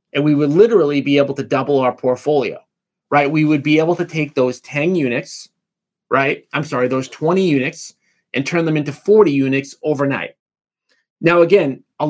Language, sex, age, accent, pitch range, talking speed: English, male, 30-49, American, 135-170 Hz, 180 wpm